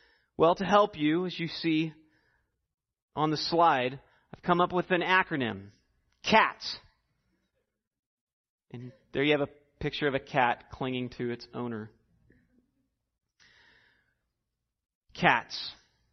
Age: 30-49